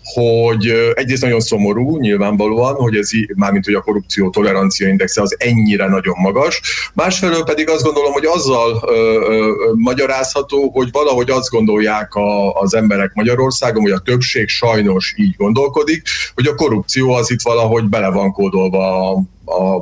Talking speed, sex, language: 150 wpm, male, Hungarian